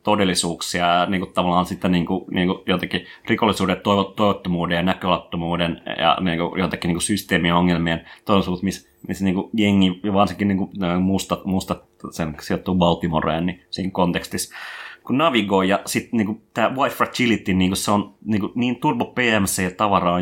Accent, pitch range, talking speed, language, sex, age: native, 90-100 Hz, 150 wpm, Finnish, male, 30-49